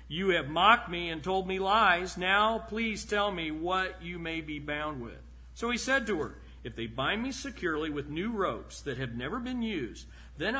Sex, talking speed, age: male, 210 wpm, 50-69